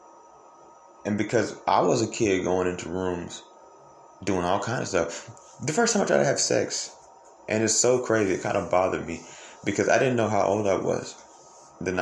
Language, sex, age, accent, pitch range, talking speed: English, male, 30-49, American, 90-110 Hz, 200 wpm